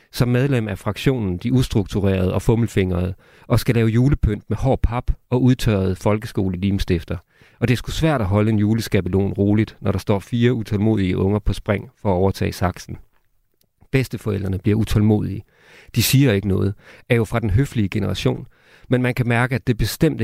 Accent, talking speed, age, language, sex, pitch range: native, 180 wpm, 40-59, Danish, male, 100-120 Hz